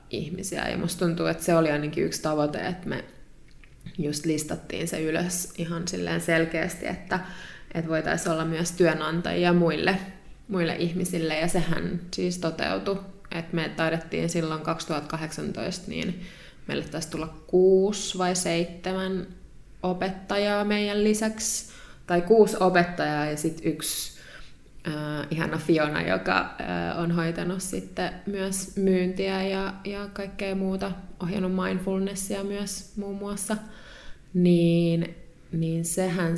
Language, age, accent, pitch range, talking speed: Finnish, 20-39, native, 160-190 Hz, 120 wpm